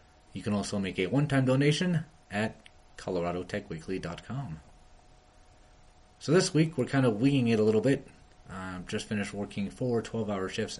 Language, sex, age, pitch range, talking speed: English, male, 30-49, 90-120 Hz, 150 wpm